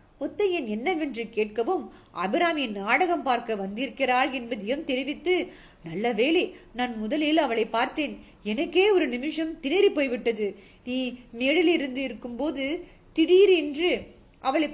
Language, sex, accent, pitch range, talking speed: Tamil, female, native, 230-300 Hz, 105 wpm